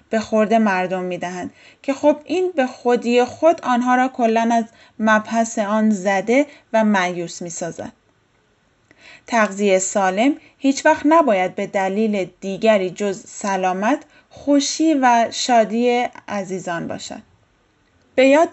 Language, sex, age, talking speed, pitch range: Persian, female, 10-29, 120 wpm, 205-255 Hz